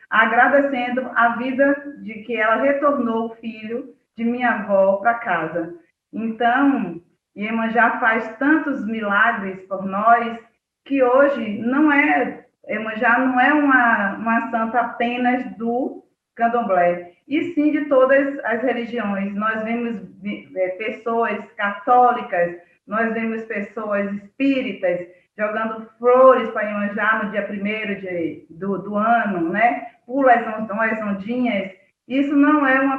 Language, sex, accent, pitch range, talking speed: Portuguese, female, Brazilian, 210-255 Hz, 120 wpm